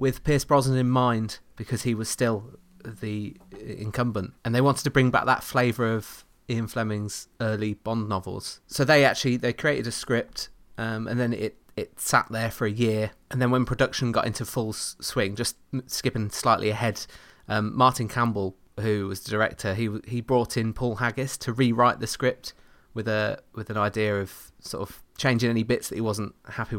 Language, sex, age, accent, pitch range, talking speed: English, male, 30-49, British, 105-125 Hz, 195 wpm